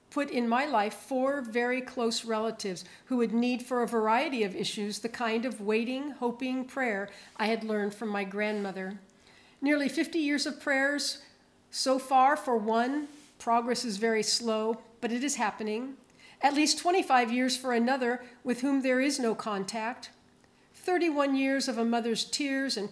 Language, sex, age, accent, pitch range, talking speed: English, female, 50-69, American, 225-270 Hz, 170 wpm